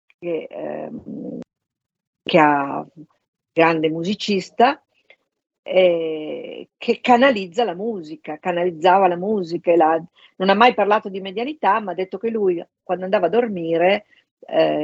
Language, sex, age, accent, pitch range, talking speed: Italian, female, 50-69, native, 160-205 Hz, 135 wpm